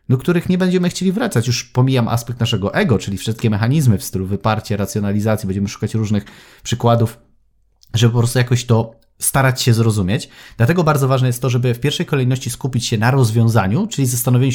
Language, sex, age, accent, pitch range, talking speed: Polish, male, 30-49, native, 115-135 Hz, 185 wpm